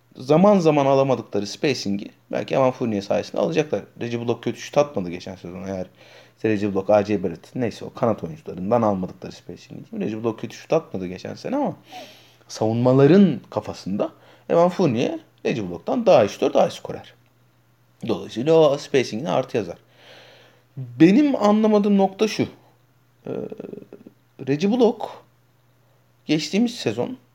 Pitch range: 110-160 Hz